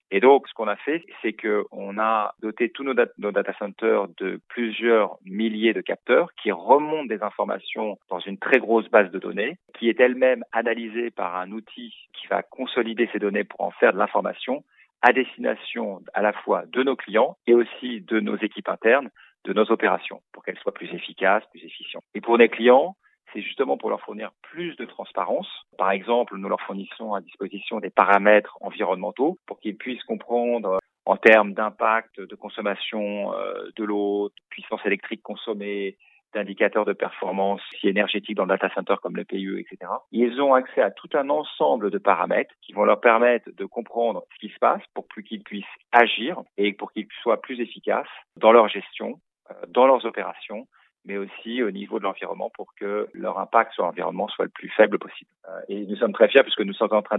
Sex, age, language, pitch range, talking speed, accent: male, 40-59, French, 100-120 Hz, 195 wpm, French